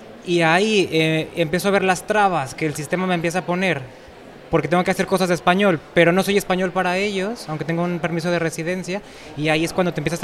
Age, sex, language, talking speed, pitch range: 20-39, male, Spanish, 235 wpm, 160-195 Hz